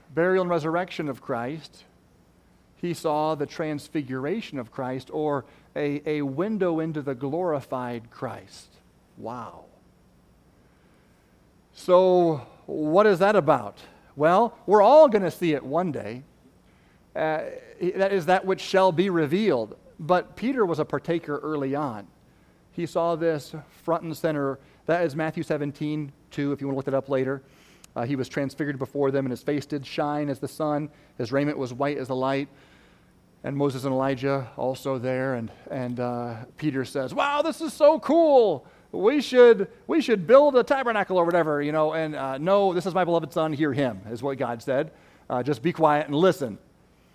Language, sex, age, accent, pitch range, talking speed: English, male, 40-59, American, 140-180 Hz, 175 wpm